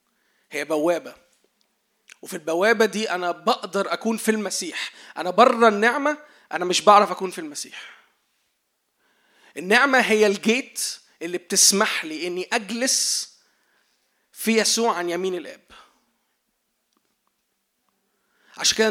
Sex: male